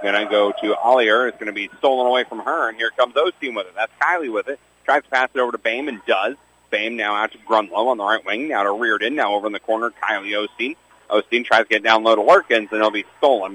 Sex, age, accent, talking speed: male, 40-59, American, 280 wpm